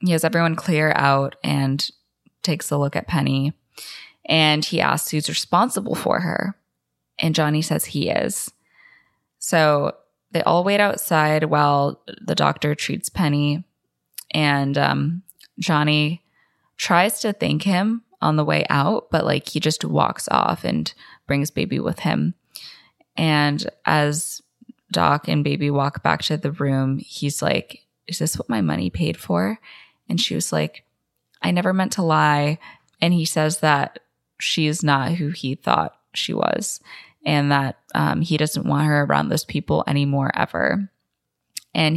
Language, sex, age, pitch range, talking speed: English, female, 20-39, 145-170 Hz, 155 wpm